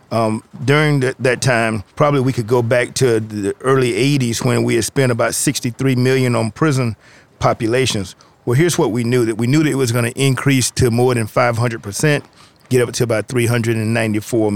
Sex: male